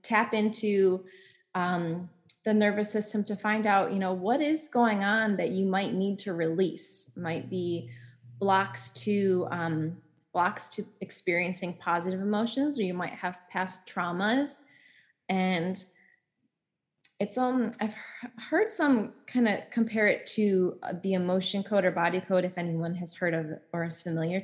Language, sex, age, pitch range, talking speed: English, female, 20-39, 175-210 Hz, 150 wpm